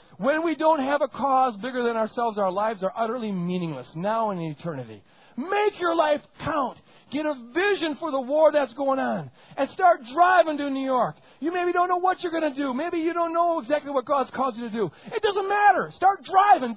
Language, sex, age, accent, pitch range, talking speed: English, male, 40-59, American, 200-310 Hz, 220 wpm